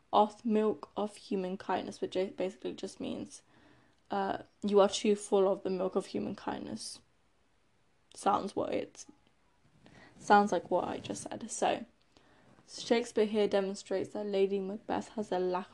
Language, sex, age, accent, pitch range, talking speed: English, female, 10-29, British, 195-230 Hz, 150 wpm